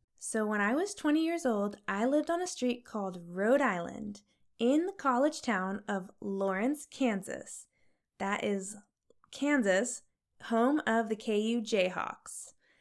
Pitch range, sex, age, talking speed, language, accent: 200-260 Hz, female, 20-39, 140 wpm, English, American